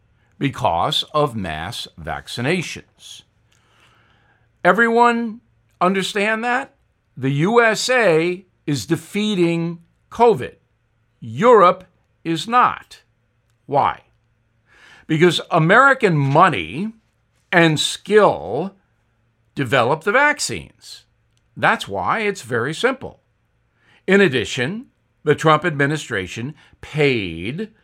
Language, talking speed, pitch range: English, 75 wpm, 115-190 Hz